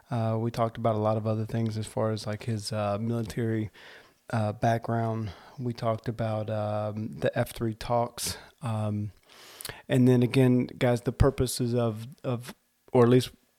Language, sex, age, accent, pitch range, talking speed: English, male, 30-49, American, 115-130 Hz, 165 wpm